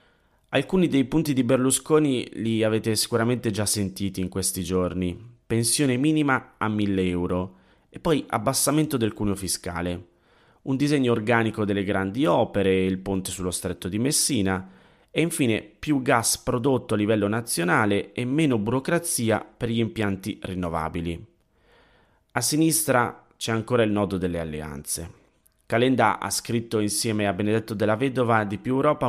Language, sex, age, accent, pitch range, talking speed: Italian, male, 30-49, native, 95-125 Hz, 145 wpm